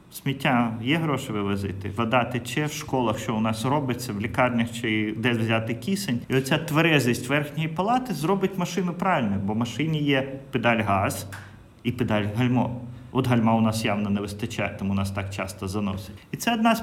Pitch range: 105-135 Hz